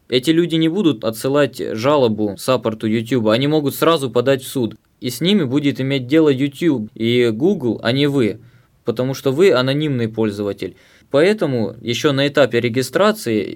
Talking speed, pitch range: 160 wpm, 125-155 Hz